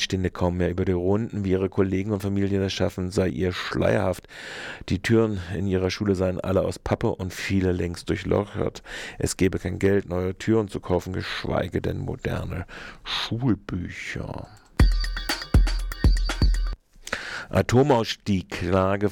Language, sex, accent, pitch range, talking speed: German, male, German, 95-115 Hz, 130 wpm